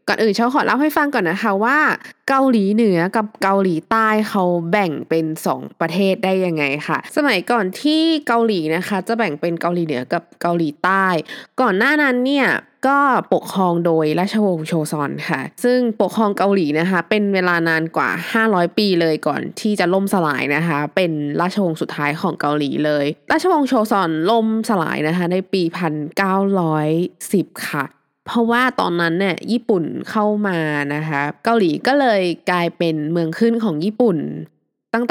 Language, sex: Thai, female